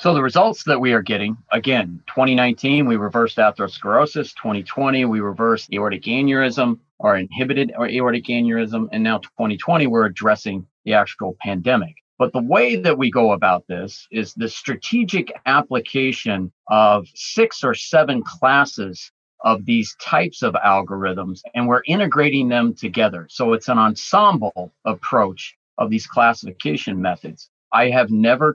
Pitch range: 110-140 Hz